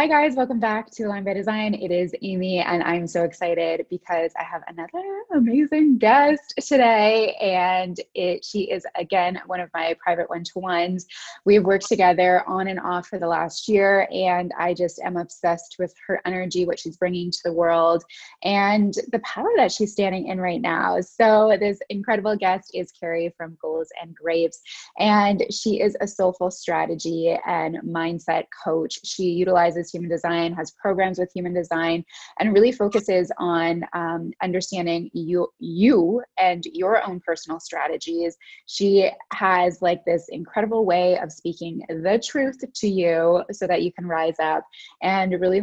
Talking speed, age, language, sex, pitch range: 165 wpm, 20-39, English, female, 170-205 Hz